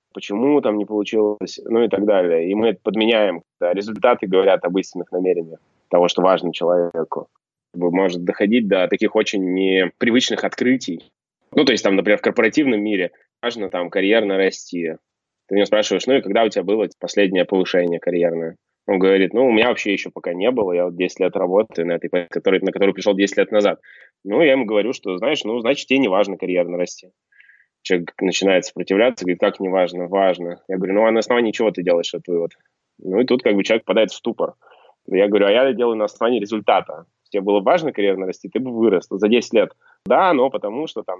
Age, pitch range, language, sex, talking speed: 20-39, 90-110 Hz, Russian, male, 200 wpm